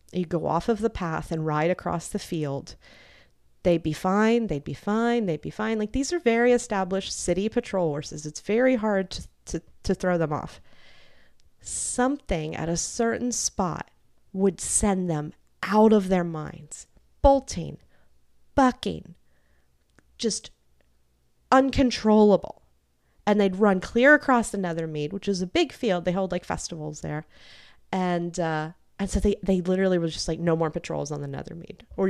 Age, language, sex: 30-49, English, female